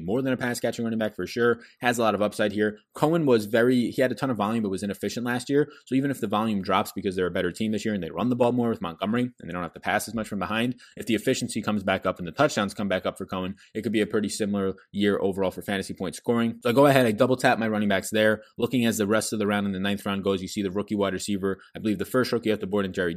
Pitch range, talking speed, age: 100-120 Hz, 325 wpm, 20-39